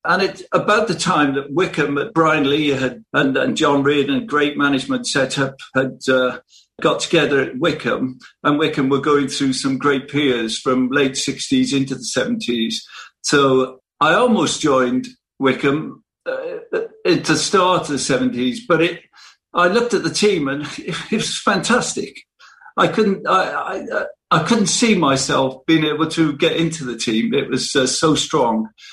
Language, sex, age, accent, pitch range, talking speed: English, male, 50-69, British, 135-170 Hz, 175 wpm